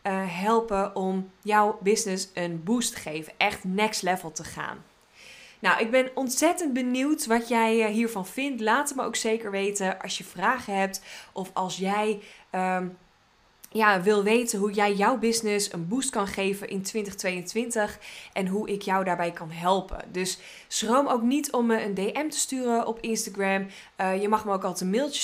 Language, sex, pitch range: Dutch, female, 185-225 Hz